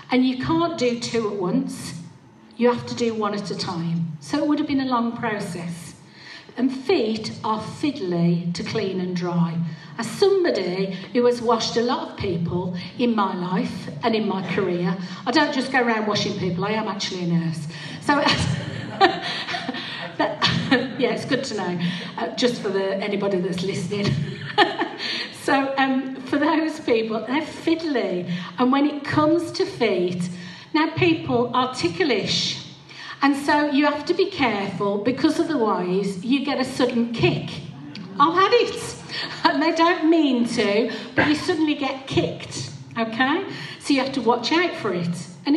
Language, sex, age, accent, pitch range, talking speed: English, female, 50-69, British, 185-285 Hz, 165 wpm